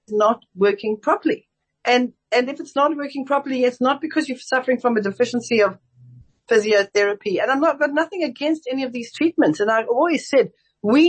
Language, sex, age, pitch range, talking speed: English, female, 60-79, 225-285 Hz, 190 wpm